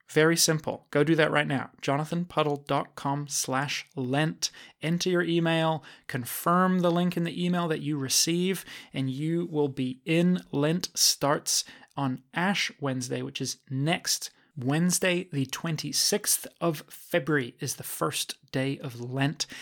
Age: 30-49